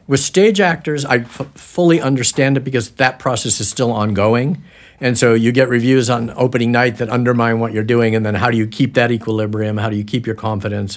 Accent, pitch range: American, 105-130 Hz